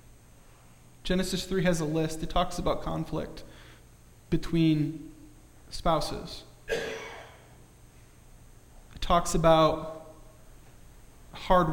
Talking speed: 75 wpm